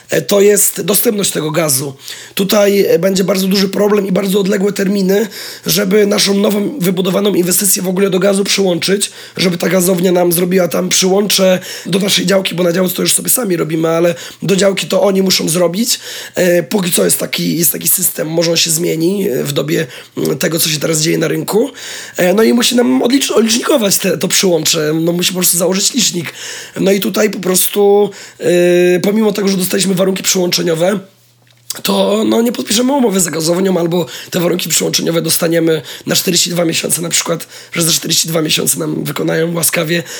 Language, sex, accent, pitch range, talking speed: Polish, male, native, 175-205 Hz, 170 wpm